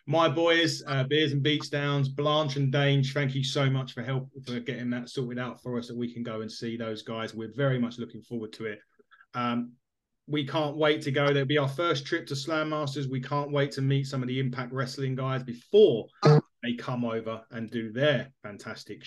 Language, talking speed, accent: English, 225 wpm, British